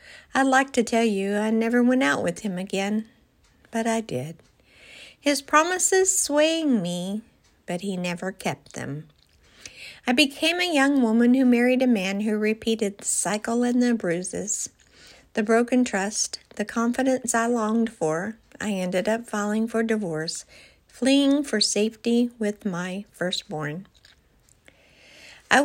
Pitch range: 200-255 Hz